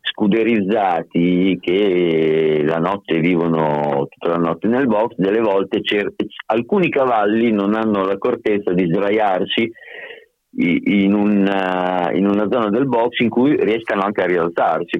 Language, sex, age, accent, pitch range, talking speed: Italian, male, 50-69, native, 90-120 Hz, 130 wpm